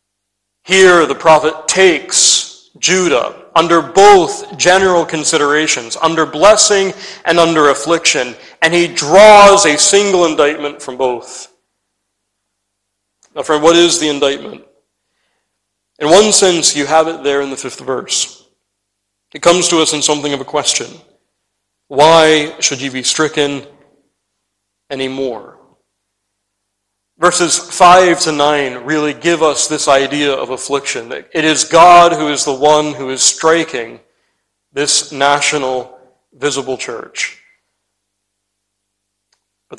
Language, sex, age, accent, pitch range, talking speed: English, male, 40-59, American, 105-160 Hz, 120 wpm